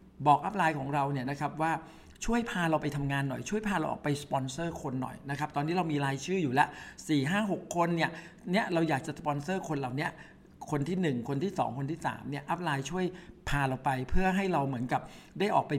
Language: Thai